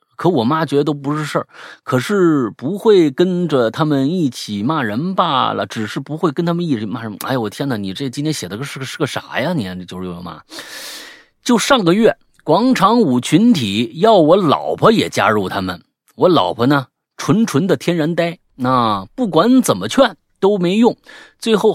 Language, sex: Chinese, male